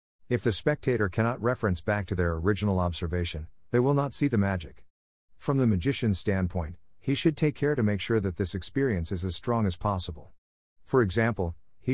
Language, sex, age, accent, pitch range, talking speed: English, male, 50-69, American, 90-120 Hz, 190 wpm